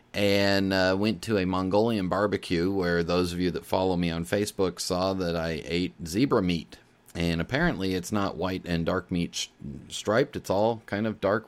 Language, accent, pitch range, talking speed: English, American, 90-110 Hz, 190 wpm